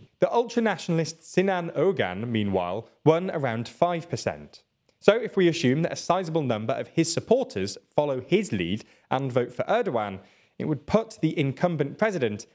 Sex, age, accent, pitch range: male, 20-39, British, 125-190 Hz